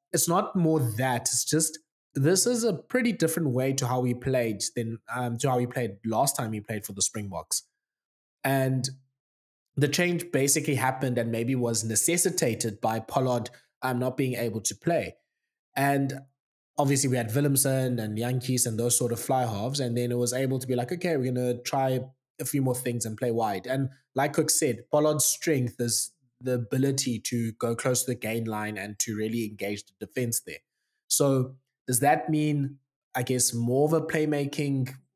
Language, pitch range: English, 120-140 Hz